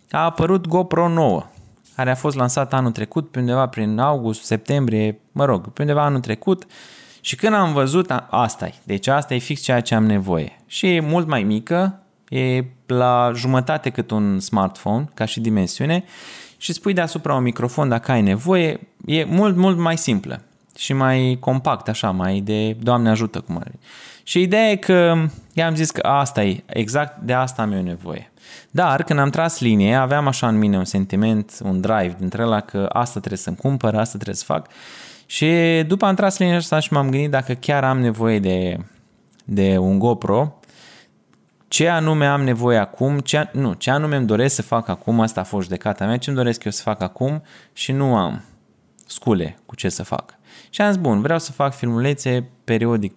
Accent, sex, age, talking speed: native, male, 20-39, 190 wpm